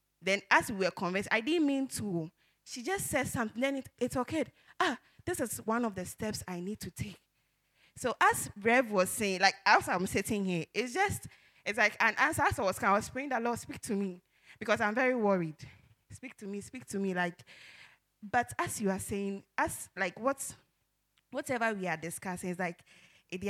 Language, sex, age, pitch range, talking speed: English, female, 20-39, 180-230 Hz, 205 wpm